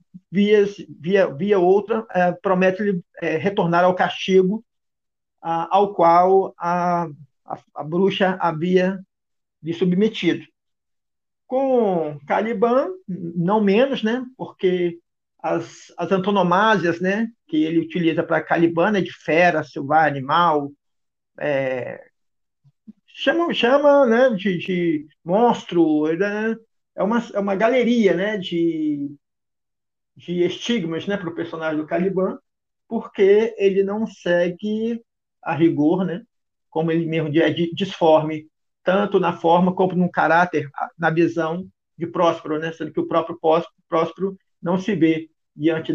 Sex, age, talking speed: male, 50-69, 125 wpm